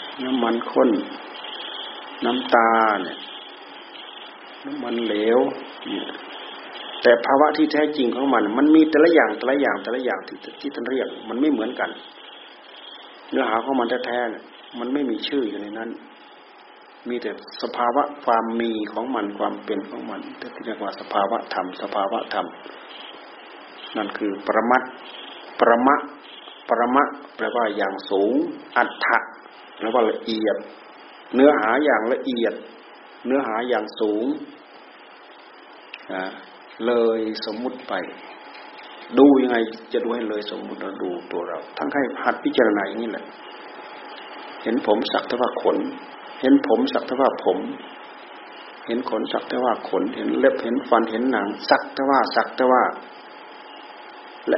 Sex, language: male, Thai